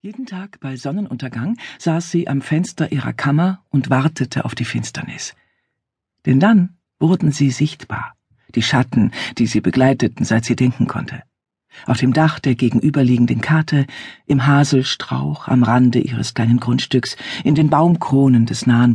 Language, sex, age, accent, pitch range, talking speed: German, female, 50-69, German, 120-160 Hz, 150 wpm